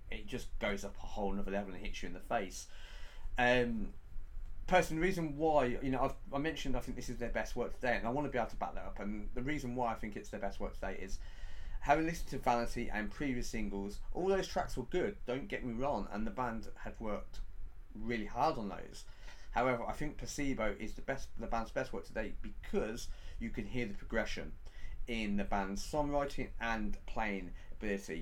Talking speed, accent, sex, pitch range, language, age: 220 wpm, British, male, 100-125 Hz, English, 30-49